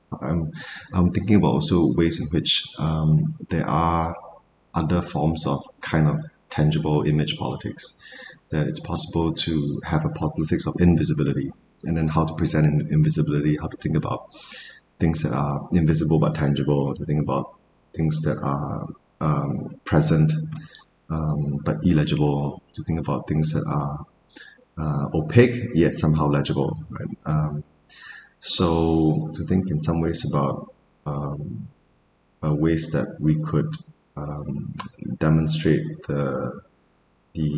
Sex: male